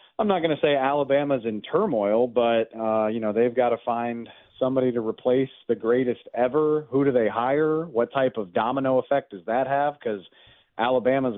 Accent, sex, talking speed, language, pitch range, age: American, male, 190 wpm, English, 110-140 Hz, 40-59